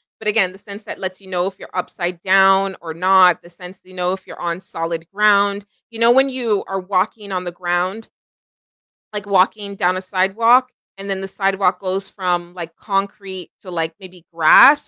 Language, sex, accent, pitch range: English, female, American, 185-225 Hz